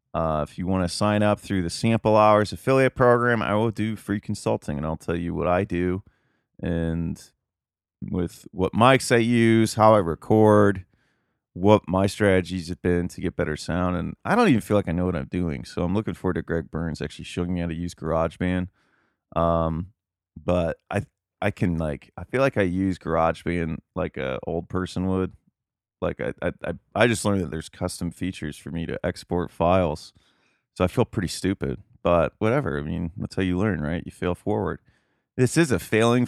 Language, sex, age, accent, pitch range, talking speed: English, male, 30-49, American, 85-110 Hz, 200 wpm